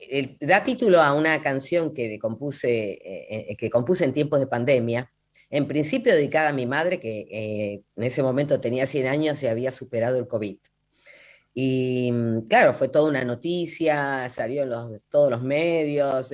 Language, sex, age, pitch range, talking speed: Spanish, female, 30-49, 125-170 Hz, 160 wpm